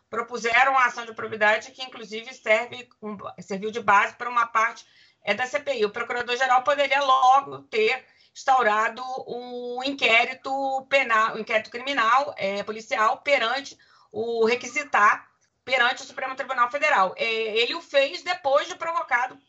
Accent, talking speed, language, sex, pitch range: Brazilian, 125 wpm, Portuguese, female, 220-280 Hz